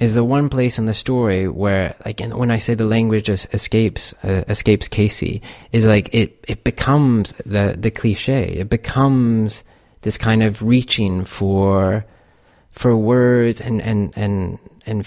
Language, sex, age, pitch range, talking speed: English, male, 30-49, 100-120 Hz, 160 wpm